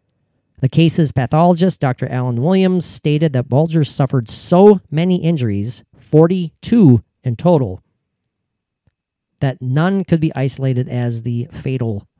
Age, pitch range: 40-59, 120-165 Hz